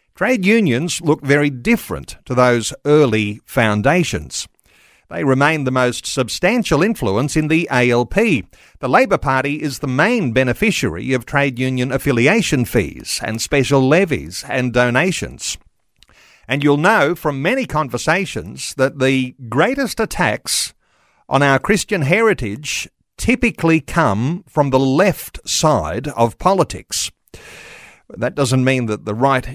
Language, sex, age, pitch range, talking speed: English, male, 50-69, 120-165 Hz, 130 wpm